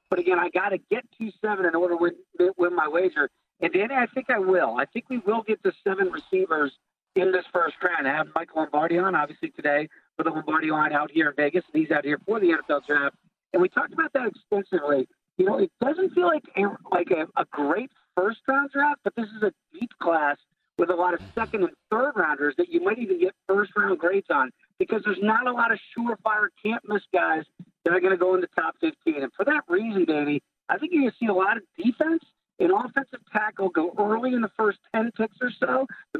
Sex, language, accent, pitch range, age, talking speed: male, English, American, 180-270 Hz, 50-69, 235 wpm